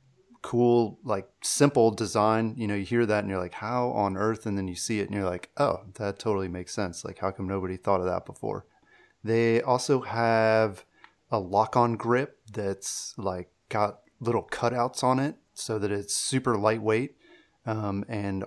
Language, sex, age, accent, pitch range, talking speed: English, male, 30-49, American, 95-115 Hz, 180 wpm